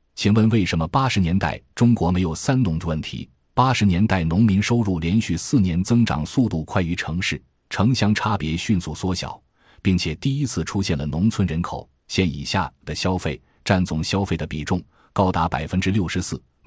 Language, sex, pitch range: Chinese, male, 85-110 Hz